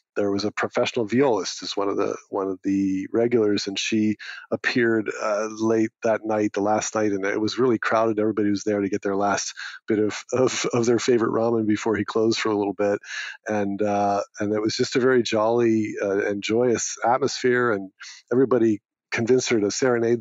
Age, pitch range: 40-59, 100-120 Hz